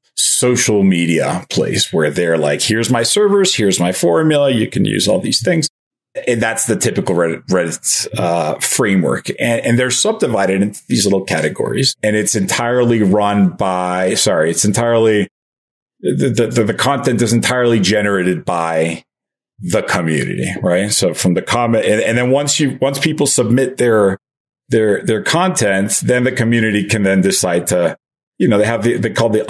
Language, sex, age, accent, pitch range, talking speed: English, male, 40-59, American, 95-120 Hz, 175 wpm